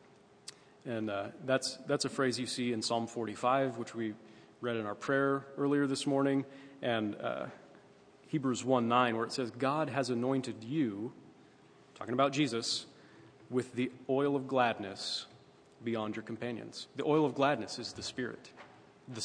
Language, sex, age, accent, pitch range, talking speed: English, male, 30-49, American, 115-140 Hz, 160 wpm